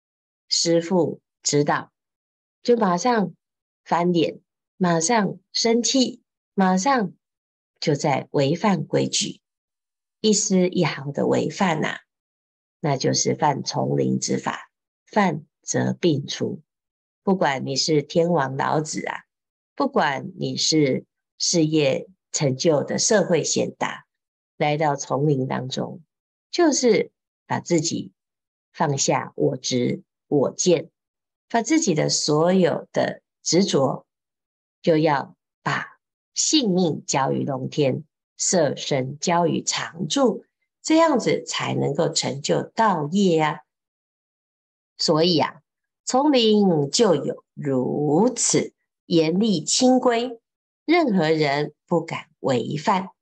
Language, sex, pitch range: Chinese, female, 145-215 Hz